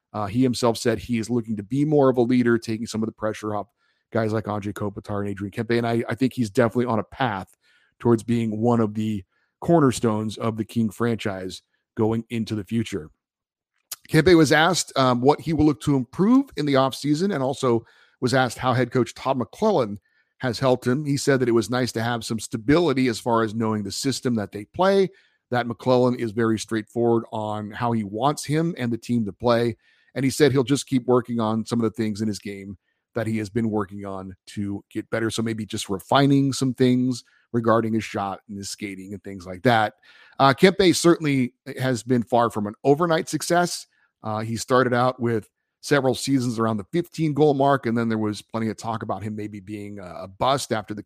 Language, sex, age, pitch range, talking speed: English, male, 40-59, 110-130 Hz, 215 wpm